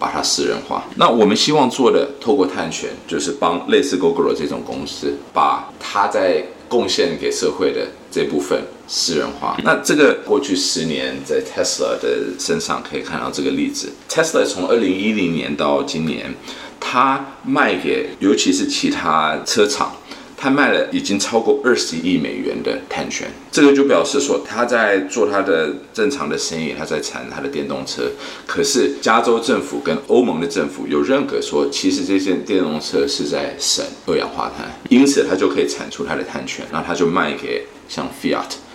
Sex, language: male, Chinese